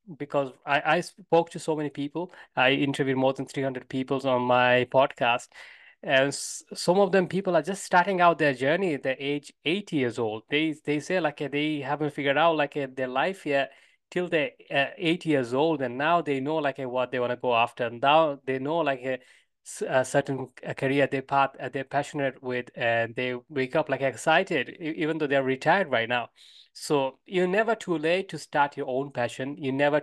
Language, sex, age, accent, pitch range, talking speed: English, male, 20-39, Indian, 130-155 Hz, 210 wpm